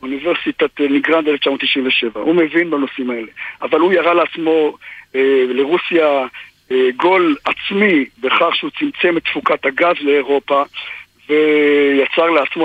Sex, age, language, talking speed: male, 50-69, Hebrew, 120 wpm